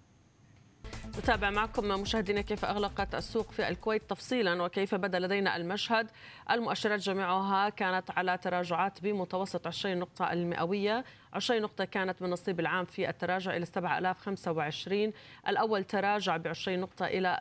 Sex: female